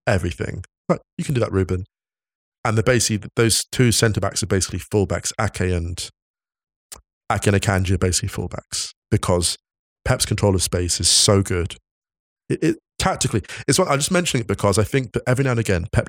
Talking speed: 185 wpm